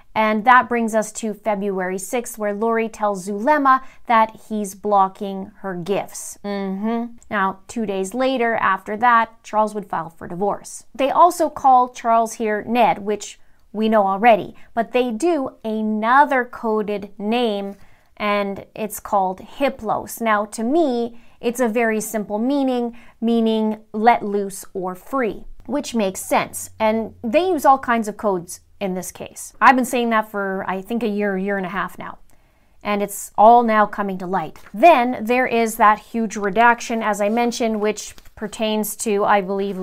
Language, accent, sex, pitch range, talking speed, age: English, American, female, 200-235 Hz, 165 wpm, 30-49